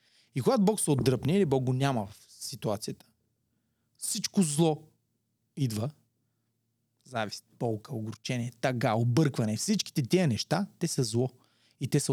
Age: 30-49